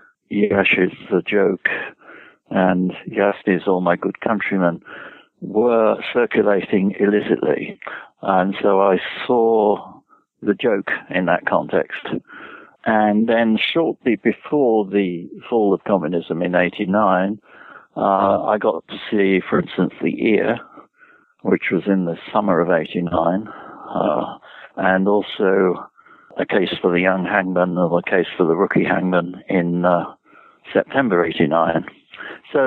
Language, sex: English, male